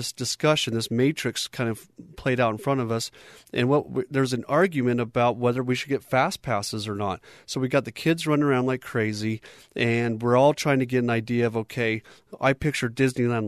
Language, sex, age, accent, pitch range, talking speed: English, male, 40-59, American, 110-130 Hz, 215 wpm